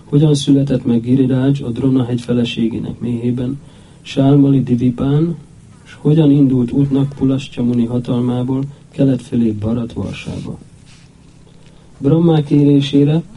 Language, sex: Hungarian, male